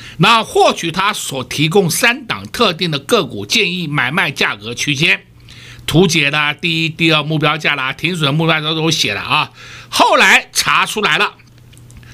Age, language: 60-79, Chinese